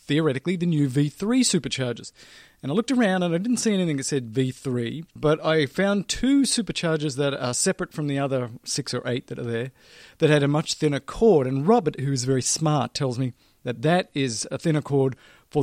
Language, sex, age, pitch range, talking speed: English, male, 40-59, 130-165 Hz, 210 wpm